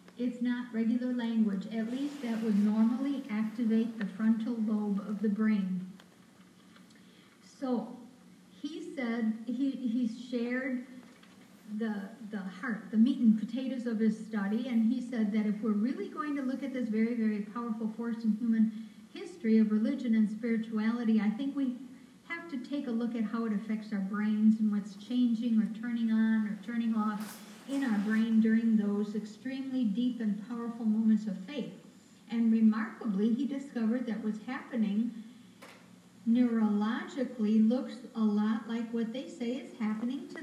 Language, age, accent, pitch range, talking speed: English, 60-79, American, 215-245 Hz, 160 wpm